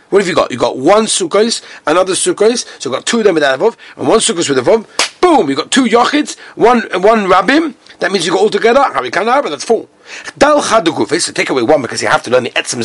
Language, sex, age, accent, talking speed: English, male, 40-59, British, 250 wpm